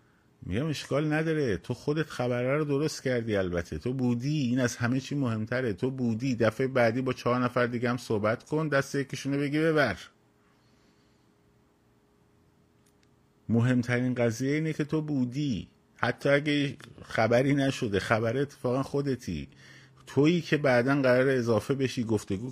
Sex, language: male, Persian